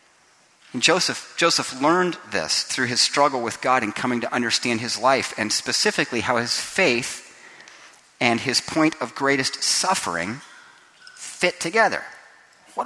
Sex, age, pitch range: male, 40-59, 120-165 Hz